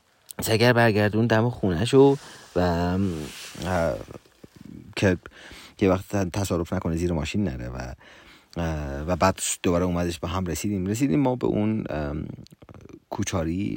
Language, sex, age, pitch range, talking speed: Persian, male, 30-49, 85-110 Hz, 120 wpm